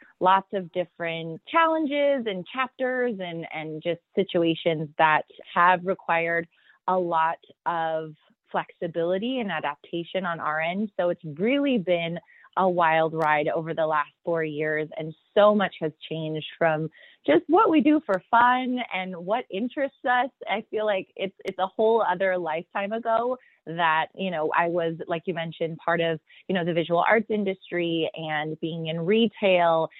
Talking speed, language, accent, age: 160 wpm, English, American, 20-39